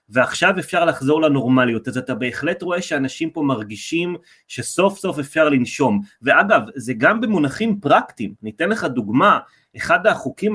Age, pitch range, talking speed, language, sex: 30-49, 130-180 Hz, 140 wpm, Hebrew, male